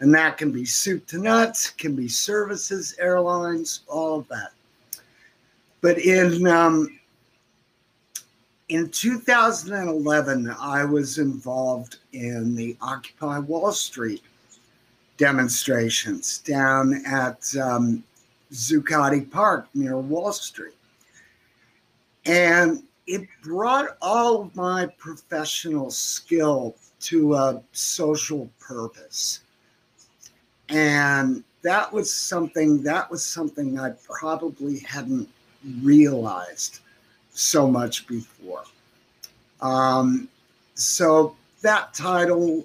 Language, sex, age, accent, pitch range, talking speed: English, male, 50-69, American, 130-175 Hz, 95 wpm